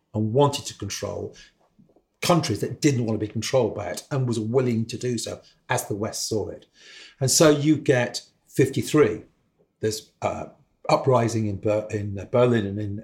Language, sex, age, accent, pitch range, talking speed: English, male, 50-69, British, 110-135 Hz, 170 wpm